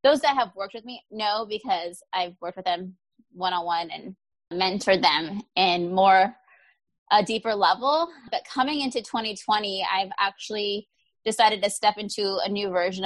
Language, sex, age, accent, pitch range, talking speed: English, female, 20-39, American, 190-235 Hz, 155 wpm